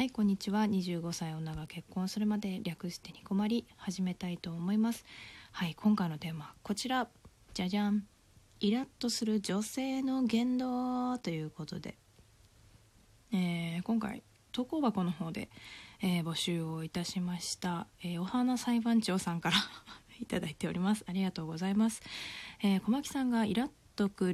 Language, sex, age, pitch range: Japanese, female, 20-39, 170-225 Hz